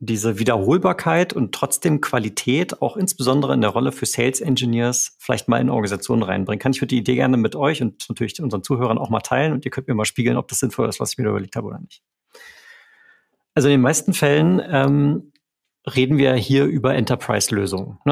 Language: German